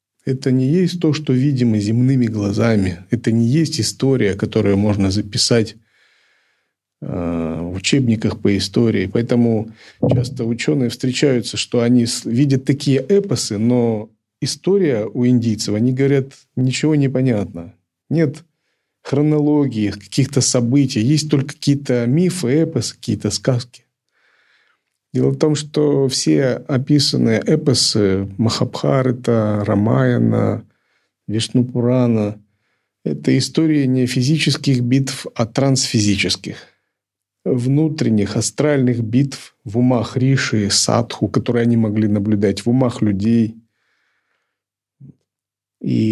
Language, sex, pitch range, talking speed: Russian, male, 110-135 Hz, 105 wpm